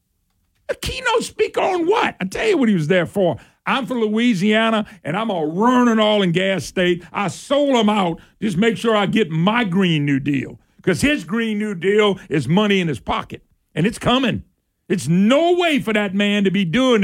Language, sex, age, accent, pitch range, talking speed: English, male, 50-69, American, 165-245 Hz, 210 wpm